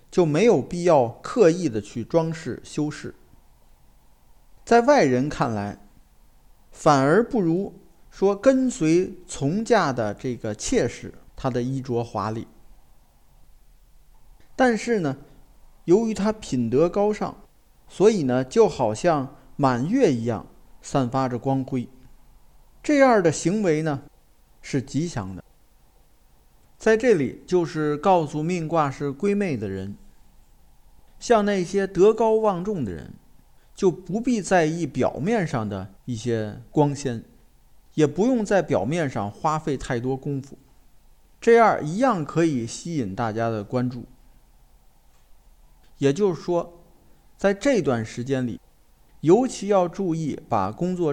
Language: Chinese